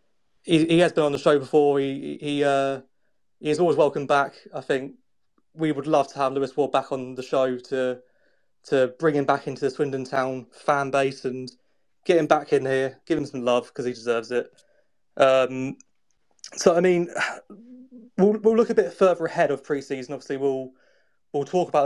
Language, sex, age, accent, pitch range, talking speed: English, male, 20-39, British, 135-160 Hz, 195 wpm